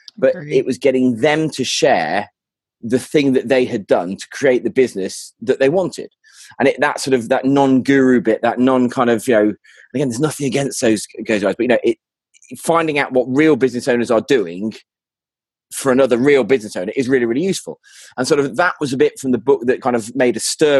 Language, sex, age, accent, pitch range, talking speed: English, male, 30-49, British, 115-135 Hz, 220 wpm